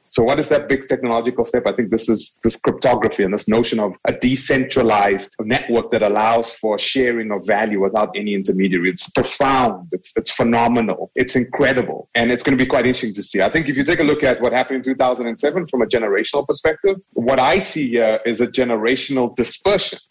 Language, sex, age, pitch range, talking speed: English, male, 30-49, 115-140 Hz, 205 wpm